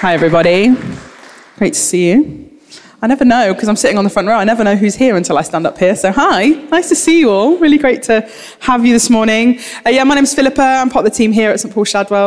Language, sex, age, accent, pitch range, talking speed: English, female, 20-39, British, 180-230 Hz, 275 wpm